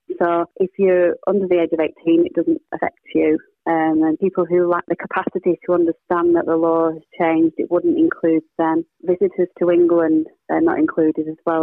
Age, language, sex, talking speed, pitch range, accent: 30-49, English, female, 195 wpm, 165-175 Hz, British